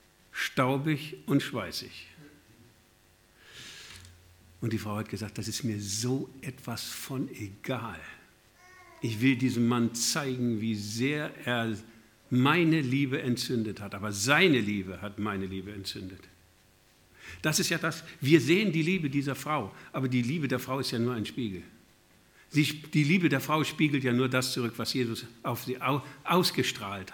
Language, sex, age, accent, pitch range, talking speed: German, male, 60-79, German, 105-135 Hz, 150 wpm